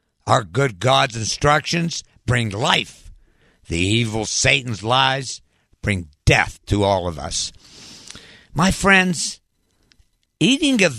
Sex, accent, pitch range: male, American, 105-170 Hz